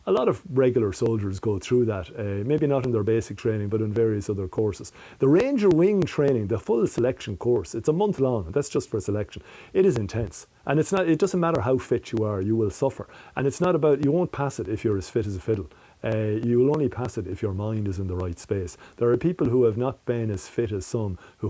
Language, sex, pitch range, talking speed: English, male, 100-130 Hz, 260 wpm